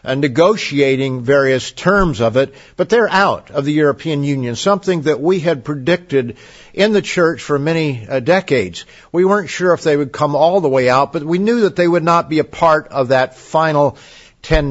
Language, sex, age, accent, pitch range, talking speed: English, male, 50-69, American, 135-170 Hz, 205 wpm